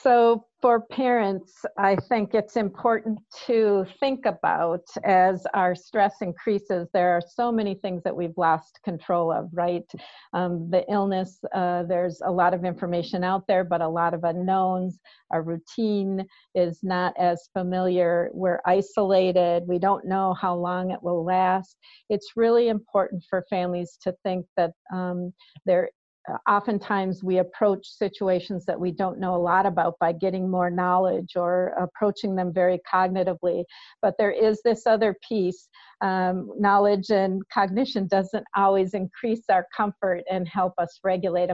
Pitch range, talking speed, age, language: 180-205 Hz, 155 wpm, 50-69, English